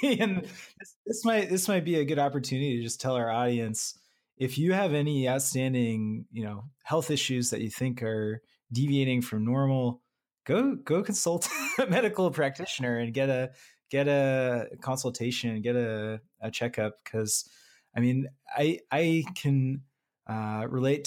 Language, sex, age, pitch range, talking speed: English, male, 20-39, 110-135 Hz, 155 wpm